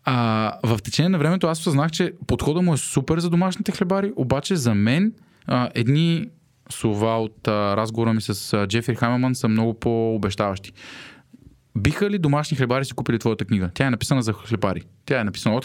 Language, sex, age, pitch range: Bulgarian, male, 20-39, 105-140 Hz